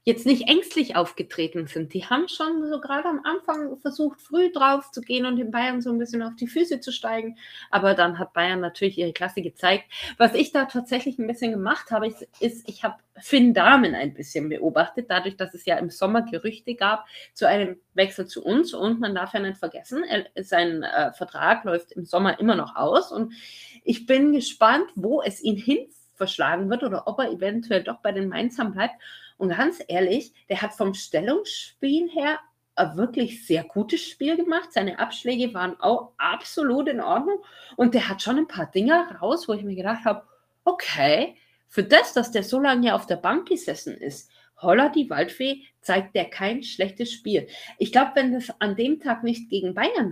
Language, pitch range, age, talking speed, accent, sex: German, 195-275 Hz, 30-49, 200 wpm, German, female